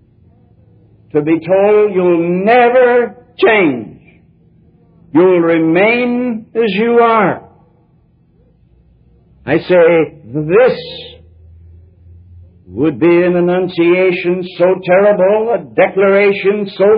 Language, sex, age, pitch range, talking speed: English, male, 60-79, 170-205 Hz, 80 wpm